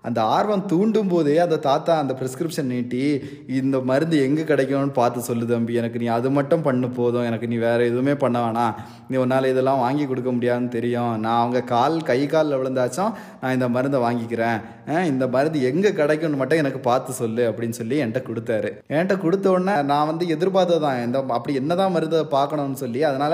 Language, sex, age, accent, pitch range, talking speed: Tamil, male, 20-39, native, 130-180 Hz, 180 wpm